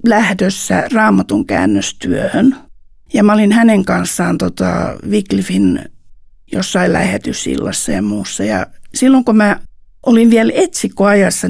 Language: Finnish